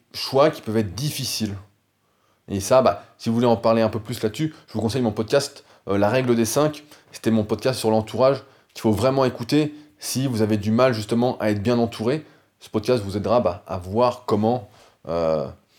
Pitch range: 110-135 Hz